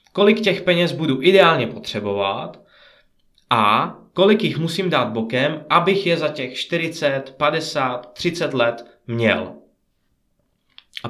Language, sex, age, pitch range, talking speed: Czech, male, 20-39, 135-175 Hz, 120 wpm